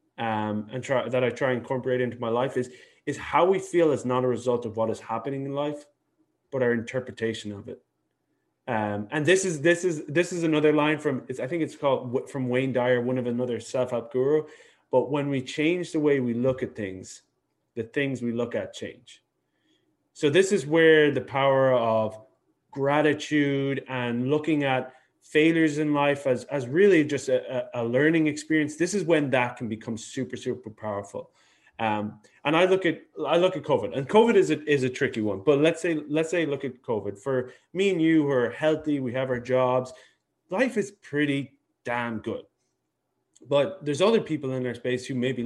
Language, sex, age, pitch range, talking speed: English, male, 20-39, 125-160 Hz, 200 wpm